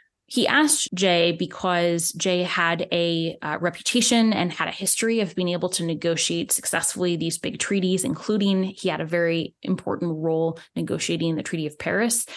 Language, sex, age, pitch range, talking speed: English, female, 10-29, 170-195 Hz, 165 wpm